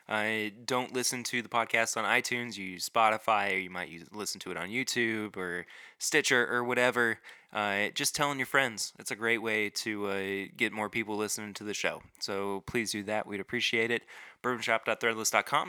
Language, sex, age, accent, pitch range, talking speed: English, male, 20-39, American, 105-125 Hz, 190 wpm